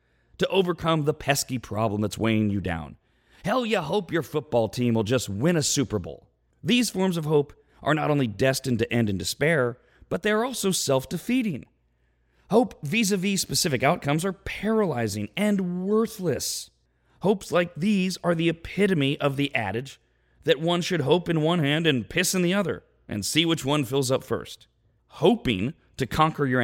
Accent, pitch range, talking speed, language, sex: American, 120-190 Hz, 175 wpm, English, male